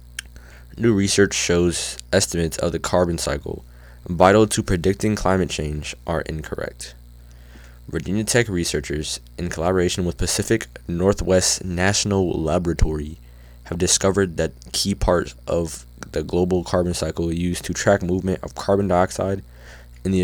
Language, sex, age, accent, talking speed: English, male, 20-39, American, 130 wpm